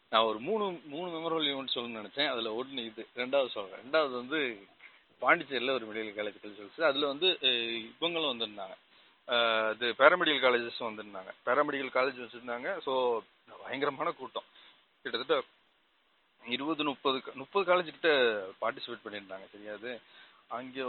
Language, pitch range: Tamil, 115-150 Hz